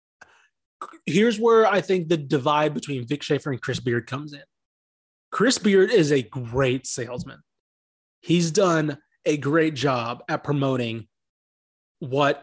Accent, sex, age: American, male, 30-49